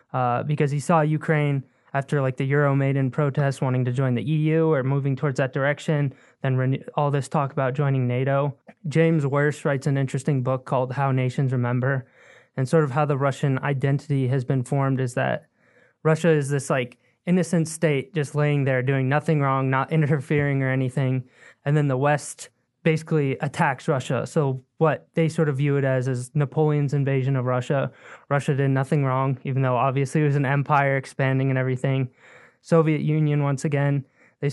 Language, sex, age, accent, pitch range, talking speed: English, male, 20-39, American, 135-155 Hz, 185 wpm